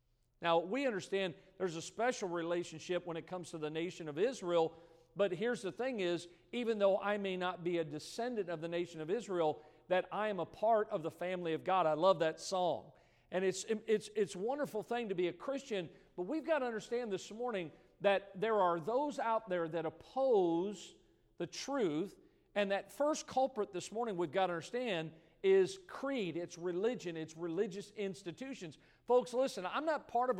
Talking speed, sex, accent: 195 wpm, male, American